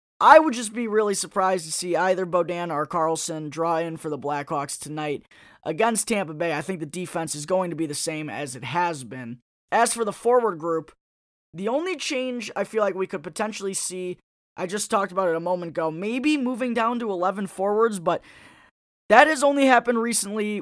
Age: 20-39